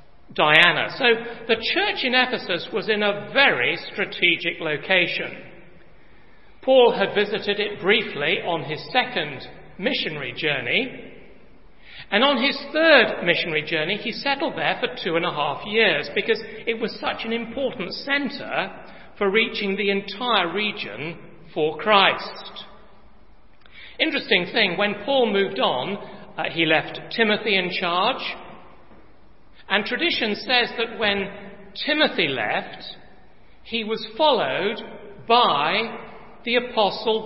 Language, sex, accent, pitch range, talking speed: English, male, British, 175-230 Hz, 120 wpm